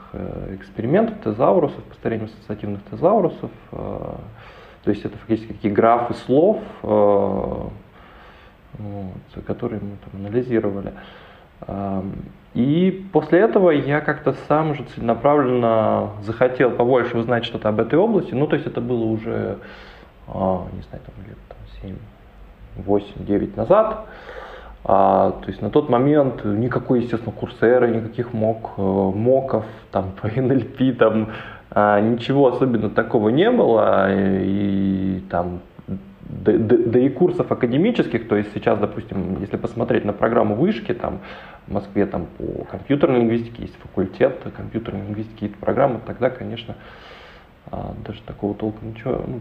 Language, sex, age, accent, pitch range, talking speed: Ukrainian, male, 20-39, native, 100-130 Hz, 125 wpm